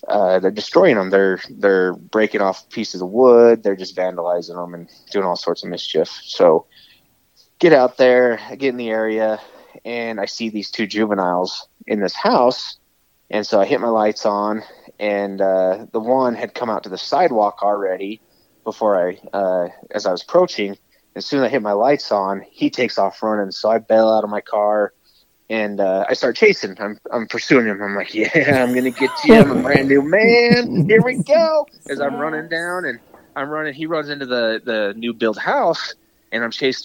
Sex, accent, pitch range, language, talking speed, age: male, American, 105-135 Hz, English, 205 wpm, 20-39